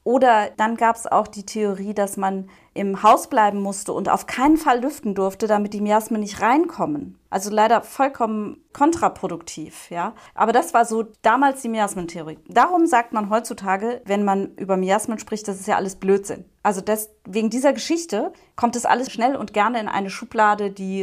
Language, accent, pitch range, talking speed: German, German, 195-230 Hz, 185 wpm